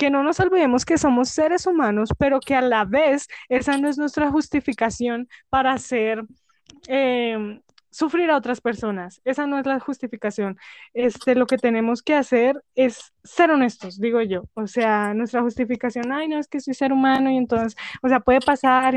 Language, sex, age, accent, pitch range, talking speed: Spanish, female, 10-29, Colombian, 230-280 Hz, 185 wpm